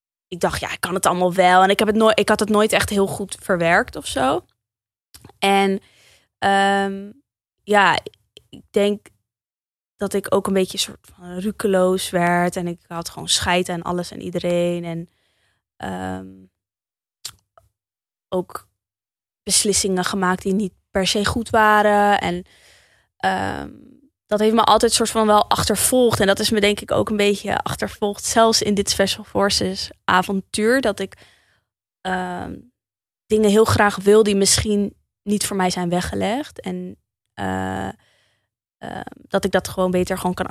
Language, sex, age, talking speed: Dutch, female, 20-39, 155 wpm